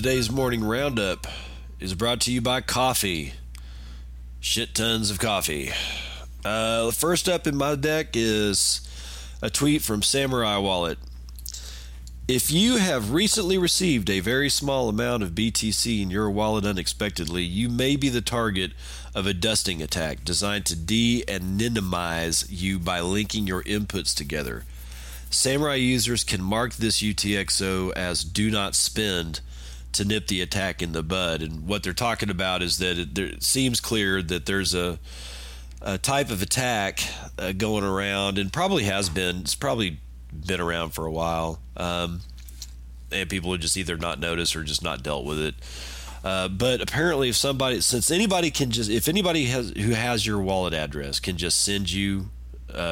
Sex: male